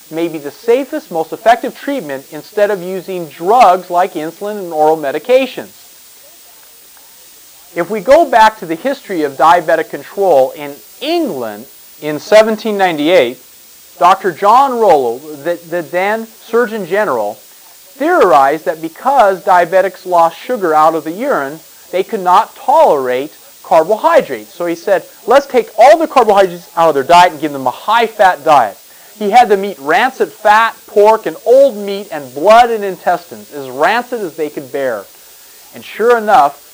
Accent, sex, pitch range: American, male, 160-225 Hz